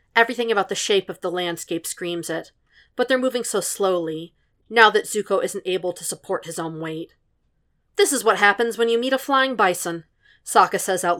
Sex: female